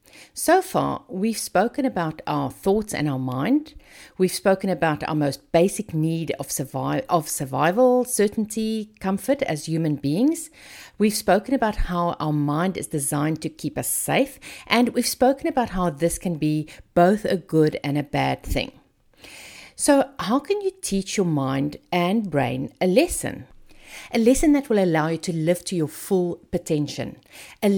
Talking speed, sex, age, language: 165 wpm, female, 50-69, English